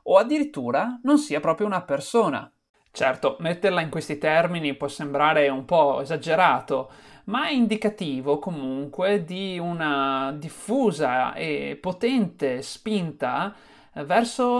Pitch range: 155-220 Hz